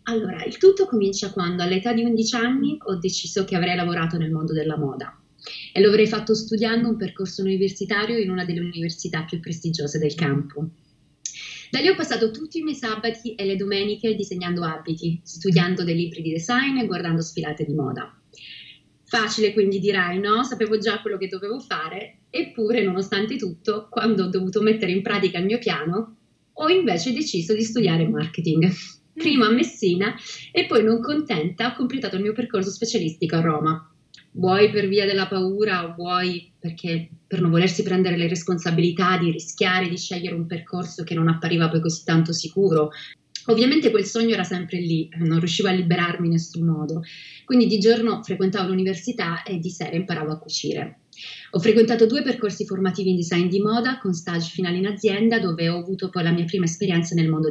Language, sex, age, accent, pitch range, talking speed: Italian, female, 30-49, native, 170-215 Hz, 185 wpm